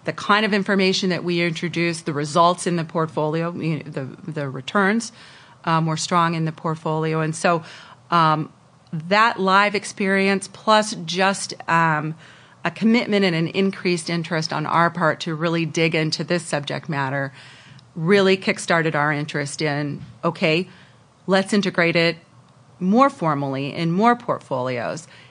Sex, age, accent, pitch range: female, 40-59, American, 155-190 Hz